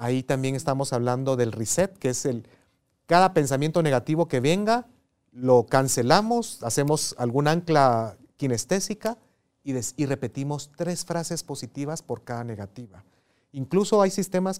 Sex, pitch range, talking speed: male, 120-155 Hz, 135 wpm